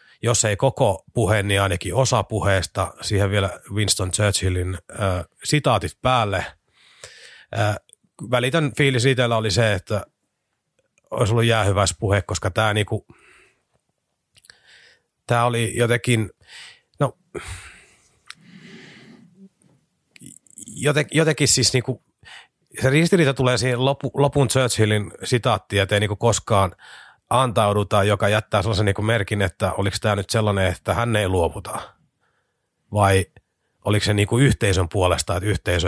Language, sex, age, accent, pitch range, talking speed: Finnish, male, 30-49, native, 100-125 Hz, 120 wpm